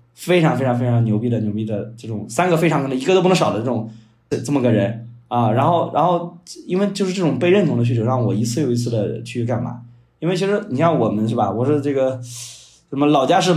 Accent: native